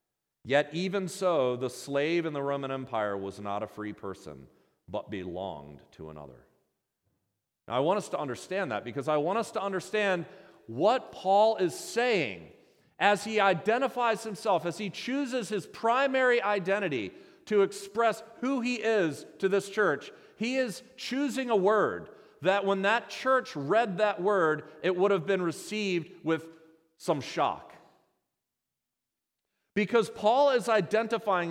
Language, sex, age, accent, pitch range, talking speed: English, male, 40-59, American, 160-220 Hz, 145 wpm